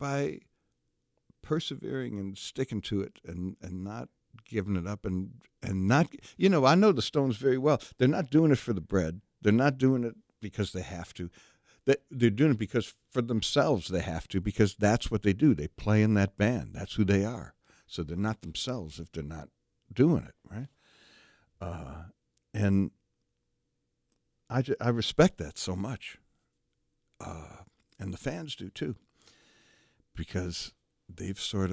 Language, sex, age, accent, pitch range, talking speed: English, male, 60-79, American, 85-120 Hz, 165 wpm